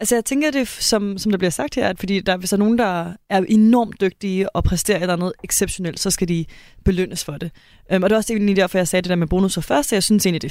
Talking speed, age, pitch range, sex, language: 290 wpm, 20-39, 180-215 Hz, female, Danish